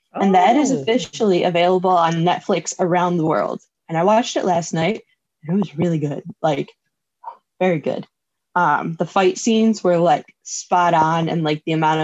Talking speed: 180 wpm